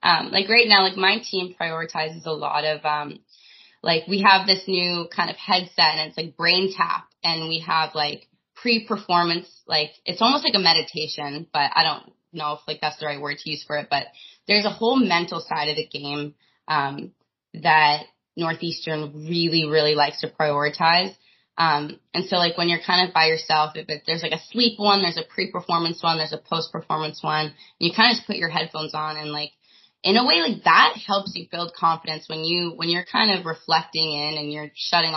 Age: 20-39